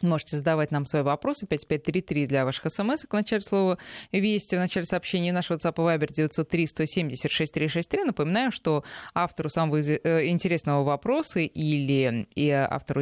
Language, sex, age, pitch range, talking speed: Russian, female, 20-39, 150-205 Hz, 140 wpm